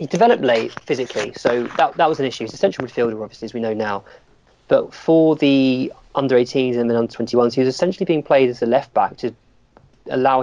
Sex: male